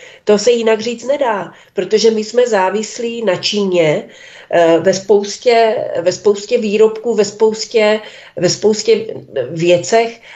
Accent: native